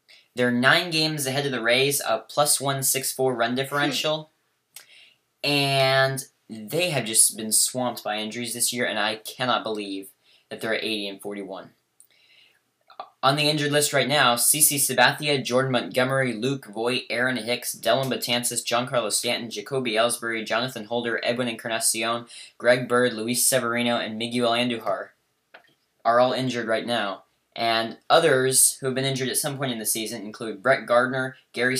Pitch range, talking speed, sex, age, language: 115-130 Hz, 165 wpm, male, 10-29, English